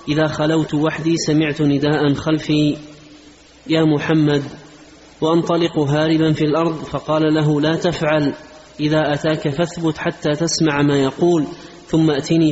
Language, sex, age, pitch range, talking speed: Arabic, male, 30-49, 145-160 Hz, 120 wpm